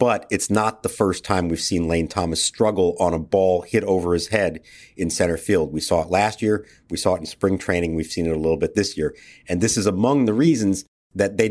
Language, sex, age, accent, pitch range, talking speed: English, male, 50-69, American, 90-115 Hz, 250 wpm